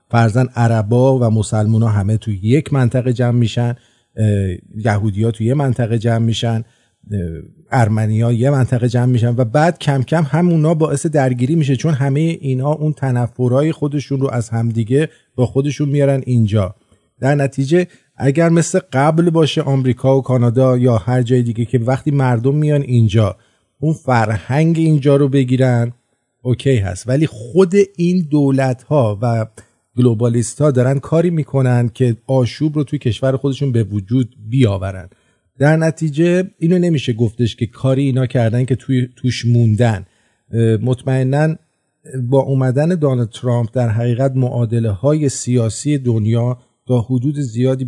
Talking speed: 145 wpm